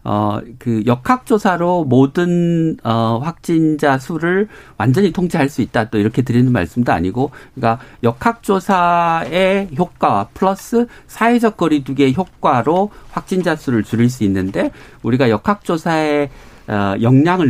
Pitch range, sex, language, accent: 115-170 Hz, male, Korean, native